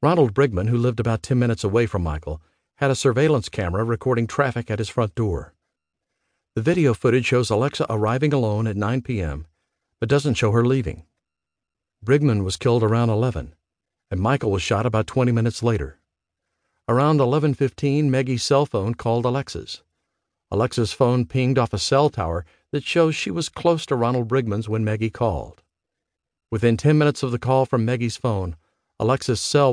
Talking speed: 170 wpm